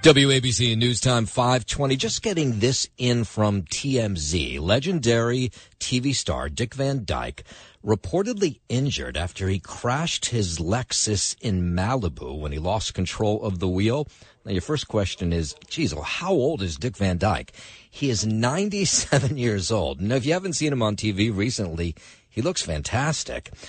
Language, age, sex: English, 50-69, male